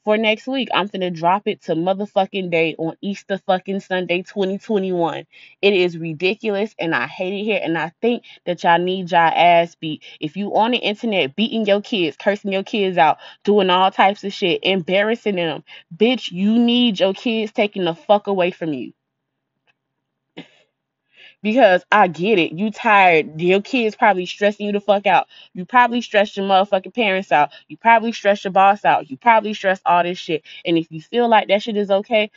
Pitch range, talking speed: 185-230 Hz, 195 wpm